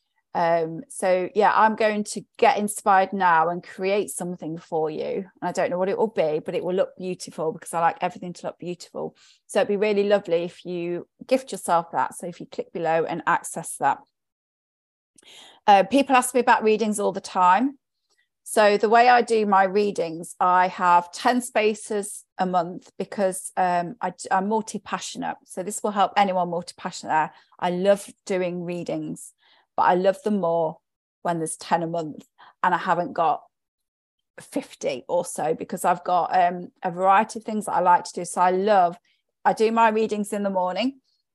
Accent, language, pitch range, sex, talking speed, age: British, English, 175-210 Hz, female, 190 wpm, 30-49